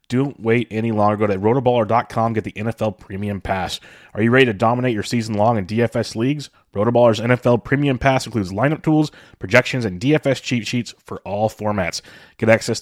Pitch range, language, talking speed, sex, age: 105-135 Hz, English, 185 wpm, male, 30-49